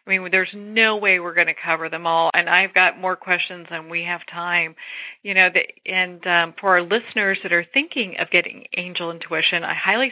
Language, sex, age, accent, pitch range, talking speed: English, female, 40-59, American, 175-230 Hz, 220 wpm